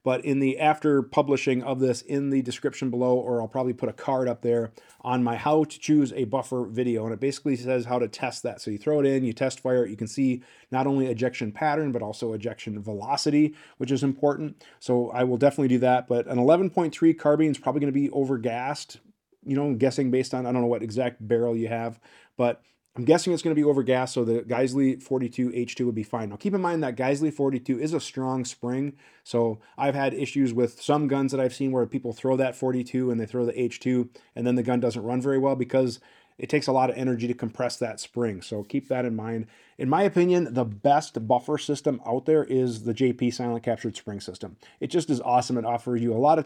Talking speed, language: 240 wpm, English